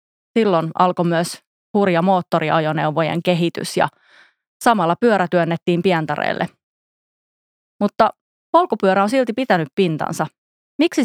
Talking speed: 100 wpm